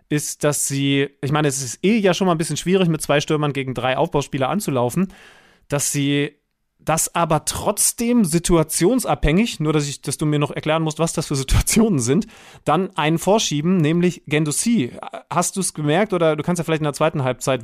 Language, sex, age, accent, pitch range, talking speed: German, male, 30-49, German, 145-185 Hz, 200 wpm